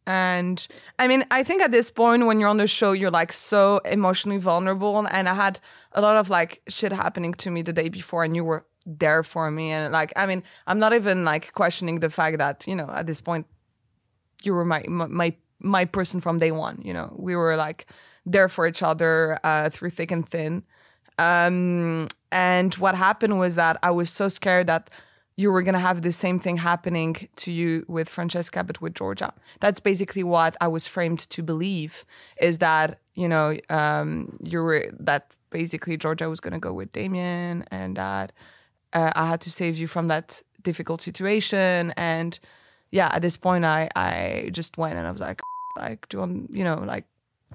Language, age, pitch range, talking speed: English, 20-39, 160-190 Hz, 200 wpm